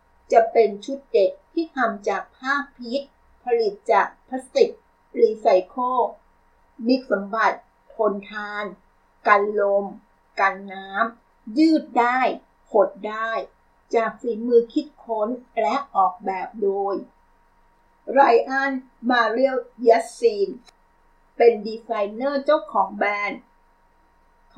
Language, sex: Thai, female